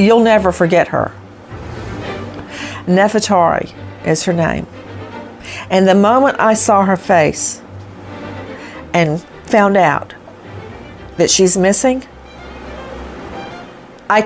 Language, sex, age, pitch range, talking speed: English, female, 50-69, 170-240 Hz, 95 wpm